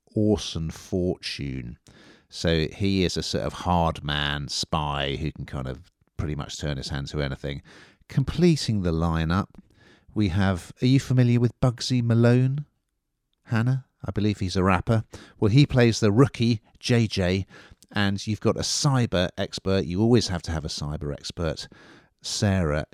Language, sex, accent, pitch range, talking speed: English, male, British, 75-110 Hz, 155 wpm